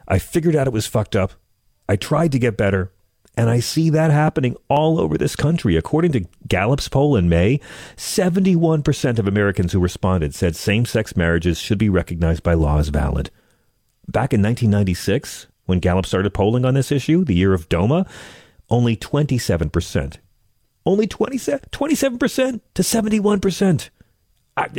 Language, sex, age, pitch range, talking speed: English, male, 40-59, 90-130 Hz, 145 wpm